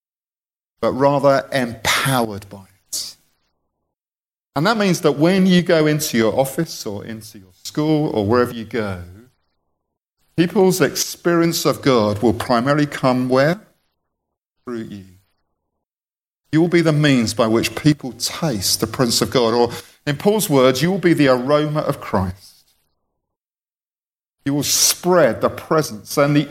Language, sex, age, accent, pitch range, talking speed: English, male, 40-59, British, 100-140 Hz, 145 wpm